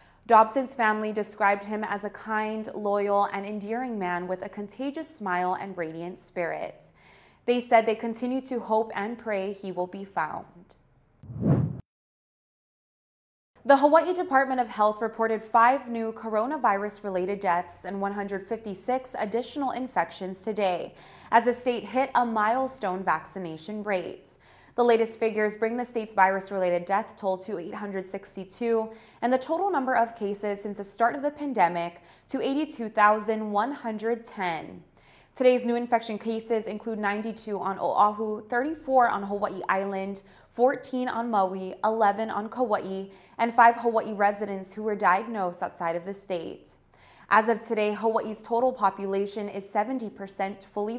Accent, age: American, 20-39